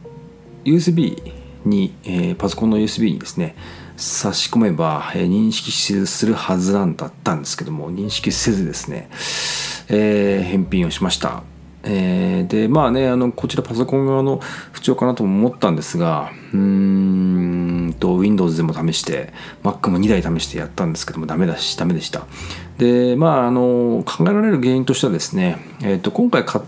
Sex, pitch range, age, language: male, 95-140 Hz, 40-59, Japanese